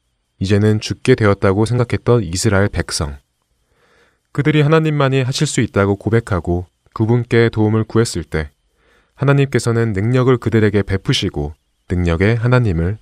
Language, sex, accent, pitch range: Korean, male, native, 90-130 Hz